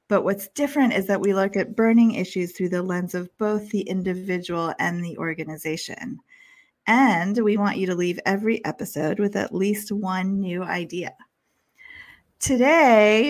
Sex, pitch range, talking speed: female, 185-245 Hz, 160 wpm